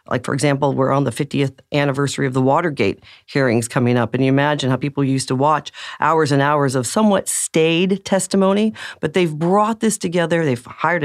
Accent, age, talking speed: American, 40-59, 195 wpm